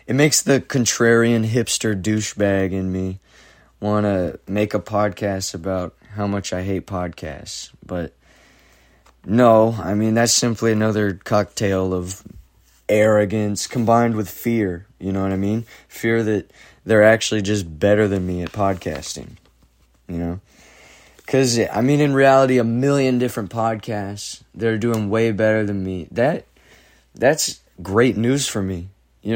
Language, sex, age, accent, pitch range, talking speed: English, male, 20-39, American, 95-115 Hz, 145 wpm